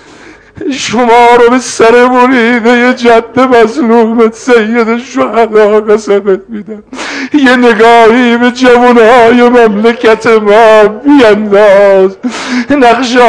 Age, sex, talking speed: 50-69, male, 90 wpm